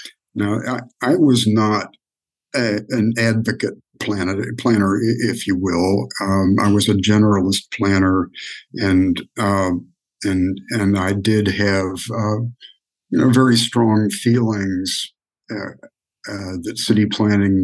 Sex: male